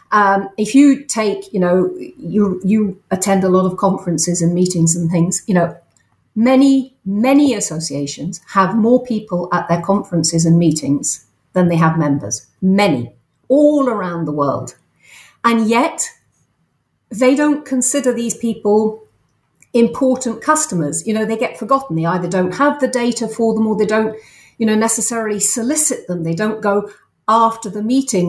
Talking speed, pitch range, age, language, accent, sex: 160 wpm, 175-235 Hz, 40-59, English, British, female